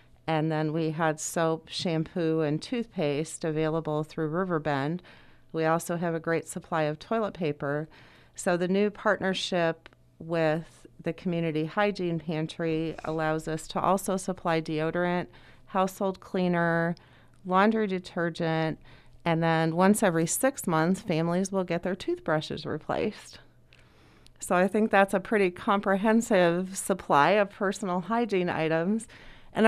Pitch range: 160-195 Hz